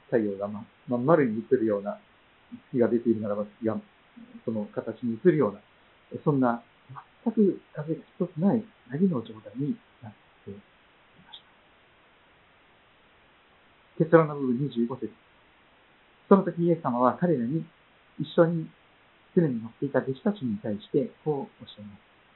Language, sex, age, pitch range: Japanese, male, 50-69, 120-195 Hz